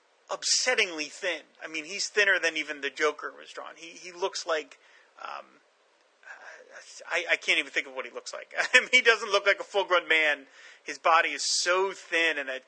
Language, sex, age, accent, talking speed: English, male, 30-49, American, 210 wpm